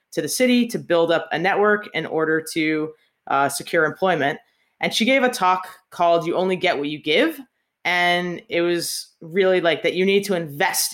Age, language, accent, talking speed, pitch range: 20-39, English, American, 195 wpm, 160-200 Hz